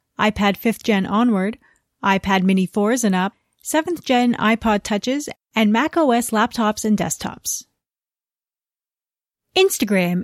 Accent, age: American, 30-49